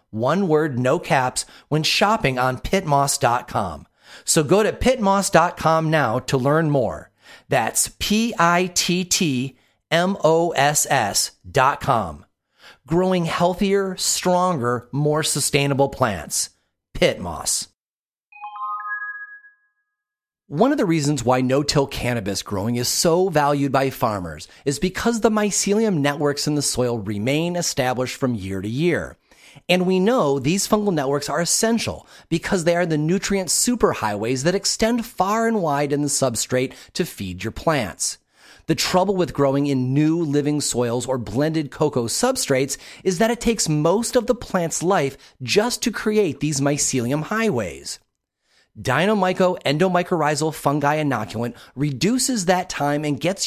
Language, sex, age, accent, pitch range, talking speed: English, male, 40-59, American, 135-195 Hz, 130 wpm